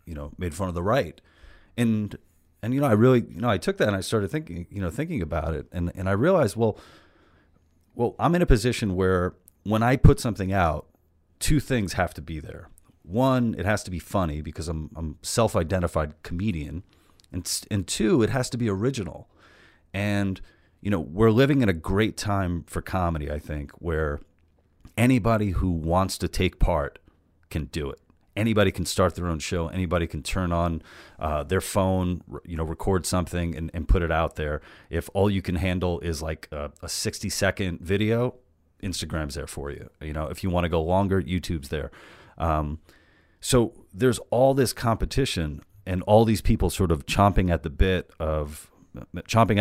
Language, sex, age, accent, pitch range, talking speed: English, male, 30-49, American, 80-100 Hz, 190 wpm